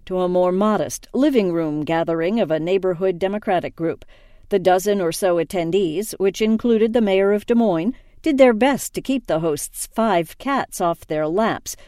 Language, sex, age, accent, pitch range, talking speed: English, female, 50-69, American, 175-230 Hz, 175 wpm